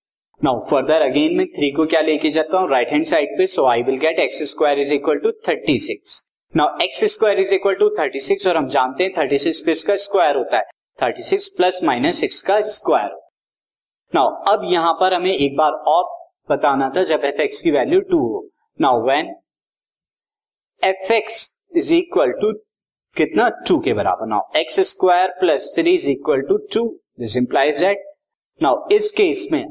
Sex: male